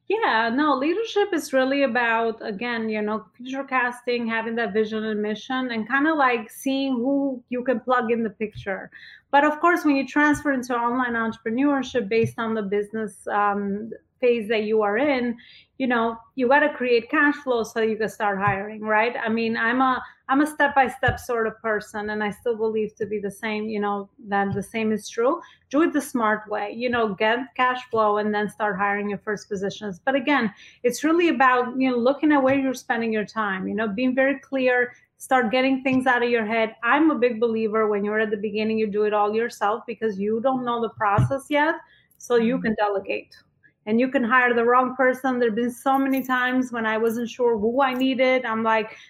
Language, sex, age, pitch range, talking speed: English, female, 30-49, 220-260 Hz, 215 wpm